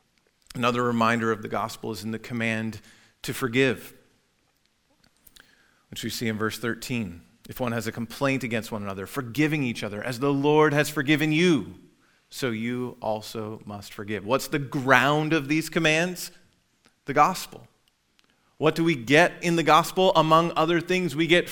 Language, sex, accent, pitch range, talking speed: English, male, American, 115-160 Hz, 165 wpm